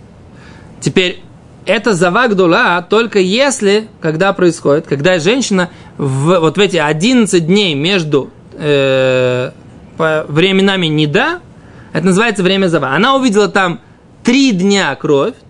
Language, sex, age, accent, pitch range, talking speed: Russian, male, 20-39, native, 165-215 Hz, 115 wpm